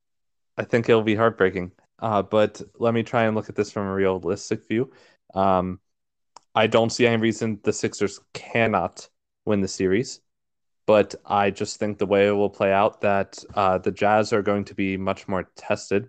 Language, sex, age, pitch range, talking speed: English, male, 20-39, 95-105 Hz, 190 wpm